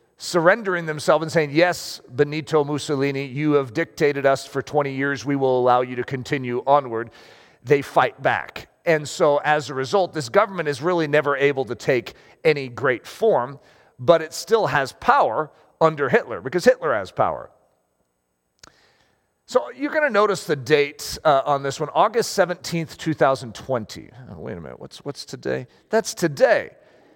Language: English